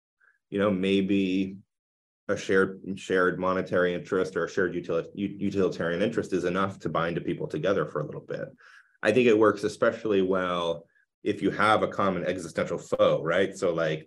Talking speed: 170 wpm